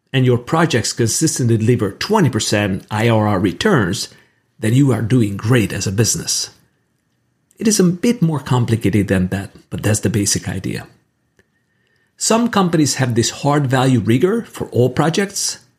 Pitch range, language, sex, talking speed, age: 115-150 Hz, English, male, 150 wpm, 50-69